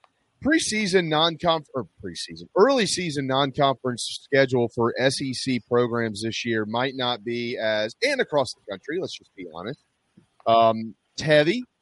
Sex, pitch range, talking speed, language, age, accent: male, 110-135 Hz, 130 wpm, English, 30-49, American